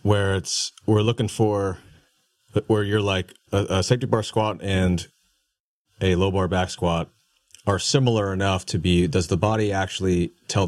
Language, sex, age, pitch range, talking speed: English, male, 30-49, 95-110 Hz, 165 wpm